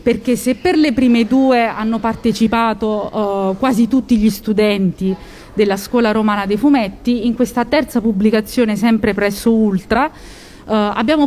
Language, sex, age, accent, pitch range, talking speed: Italian, female, 30-49, native, 200-235 Hz, 135 wpm